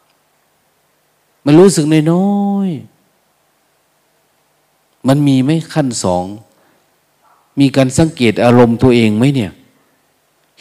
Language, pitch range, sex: Thai, 115-150 Hz, male